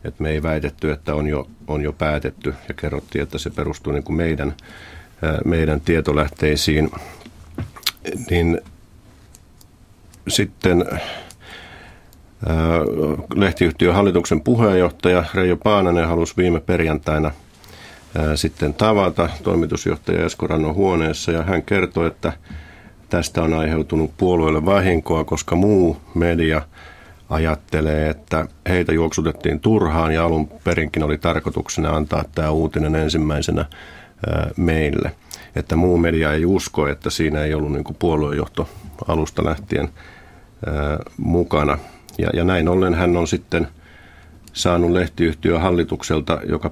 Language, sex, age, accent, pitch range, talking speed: Finnish, male, 50-69, native, 75-90 Hz, 105 wpm